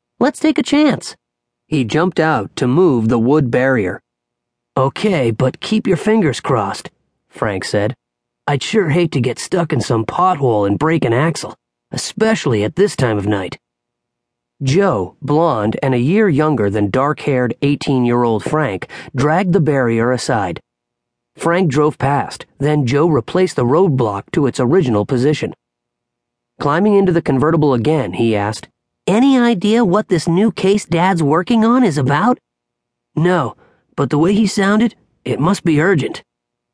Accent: American